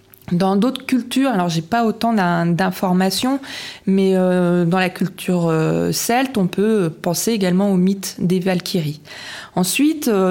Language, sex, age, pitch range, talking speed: French, female, 20-39, 180-230 Hz, 135 wpm